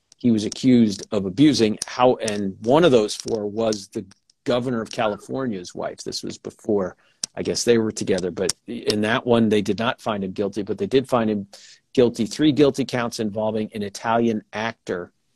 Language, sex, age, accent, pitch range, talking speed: English, male, 50-69, American, 105-125 Hz, 190 wpm